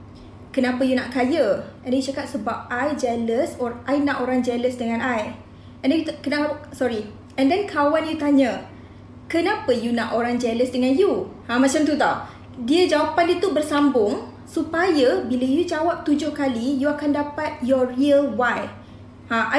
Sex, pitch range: female, 250-305 Hz